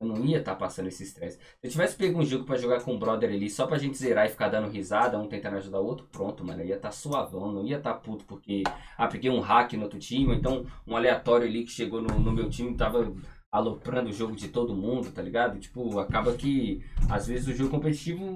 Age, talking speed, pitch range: 20-39, 265 wpm, 105-145 Hz